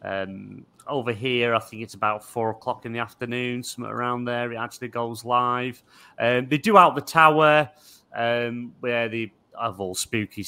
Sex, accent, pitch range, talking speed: male, British, 105-125 Hz, 180 wpm